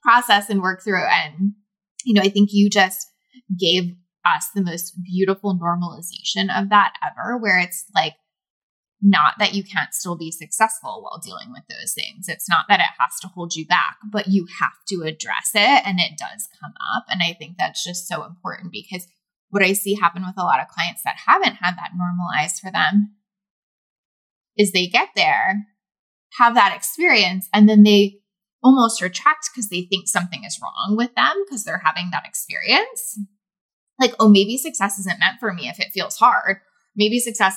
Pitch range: 180-220 Hz